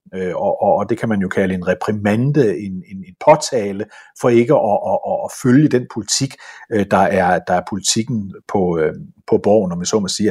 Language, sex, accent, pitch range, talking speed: Danish, male, native, 115-165 Hz, 190 wpm